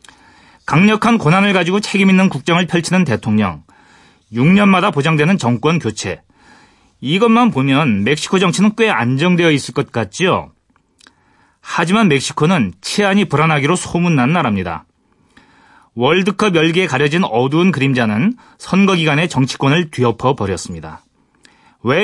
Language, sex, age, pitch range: Korean, male, 30-49, 125-195 Hz